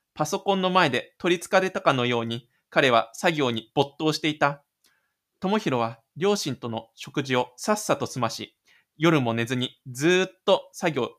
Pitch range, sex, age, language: 120-185 Hz, male, 20-39, Japanese